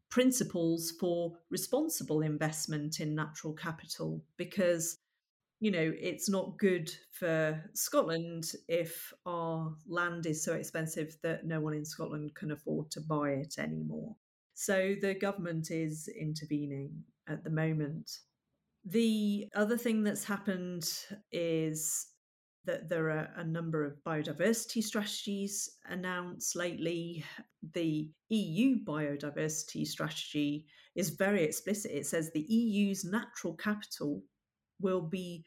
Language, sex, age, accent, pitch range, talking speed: English, female, 40-59, British, 155-195 Hz, 120 wpm